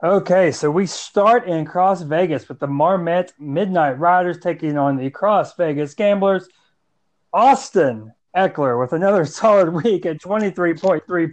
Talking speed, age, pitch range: 140 wpm, 30-49, 165-195 Hz